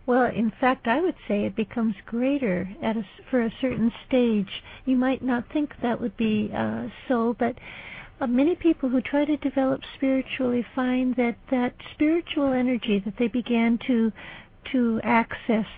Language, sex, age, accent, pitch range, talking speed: English, female, 60-79, American, 230-265 Hz, 165 wpm